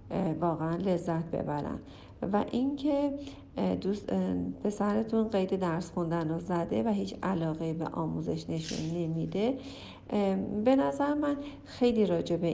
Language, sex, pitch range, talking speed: Persian, female, 165-225 Hz, 115 wpm